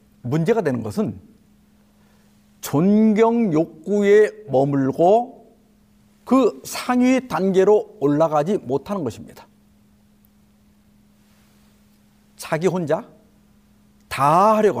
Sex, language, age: male, Korean, 50-69